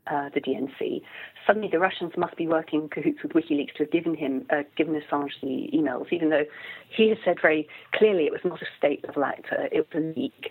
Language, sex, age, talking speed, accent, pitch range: English, female, 40-59, 225 wpm, British, 150-245 Hz